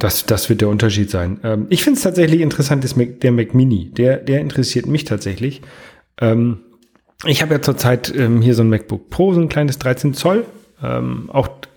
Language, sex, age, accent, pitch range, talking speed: German, male, 40-59, German, 110-140 Hz, 205 wpm